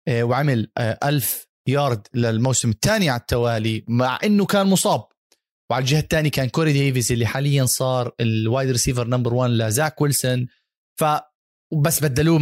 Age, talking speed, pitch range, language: 30-49, 140 wpm, 125-165 Hz, Arabic